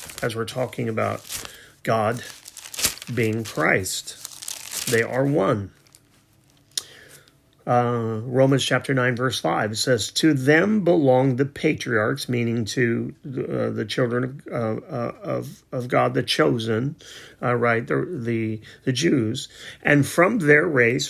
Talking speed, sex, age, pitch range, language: 120 wpm, male, 40-59, 115-140 Hz, English